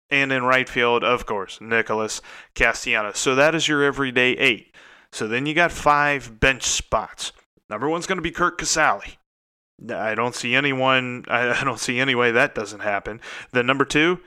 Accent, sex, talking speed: American, male, 180 wpm